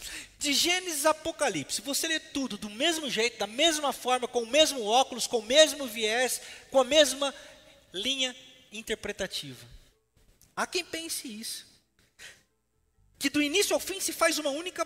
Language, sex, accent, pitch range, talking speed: Portuguese, male, Brazilian, 170-275 Hz, 160 wpm